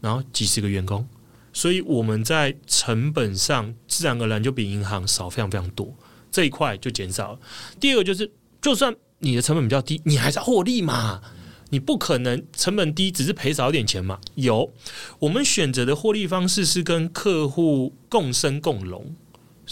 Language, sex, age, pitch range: Chinese, male, 30-49, 110-155 Hz